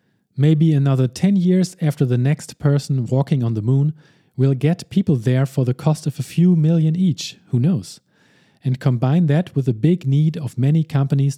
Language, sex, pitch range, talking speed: English, male, 125-160 Hz, 190 wpm